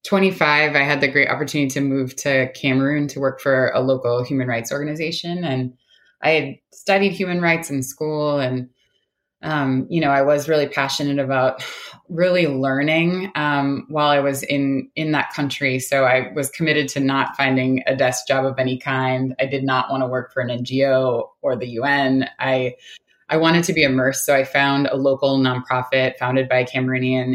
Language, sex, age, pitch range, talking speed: English, female, 20-39, 130-150 Hz, 190 wpm